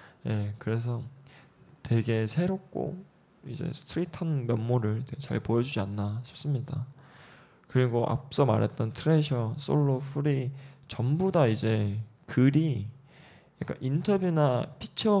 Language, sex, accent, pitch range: Korean, male, native, 120-150 Hz